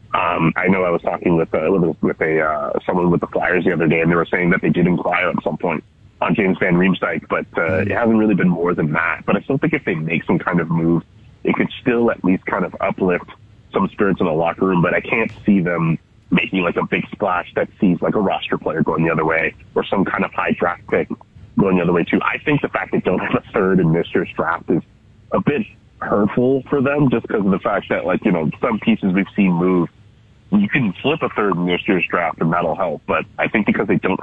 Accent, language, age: American, English, 30-49